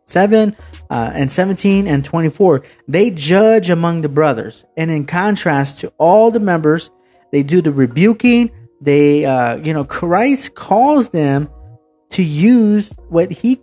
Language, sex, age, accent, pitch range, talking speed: English, male, 30-49, American, 145-190 Hz, 145 wpm